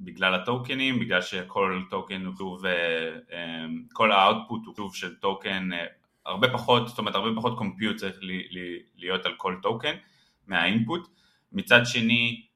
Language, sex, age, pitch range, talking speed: Hebrew, male, 20-39, 95-120 Hz, 125 wpm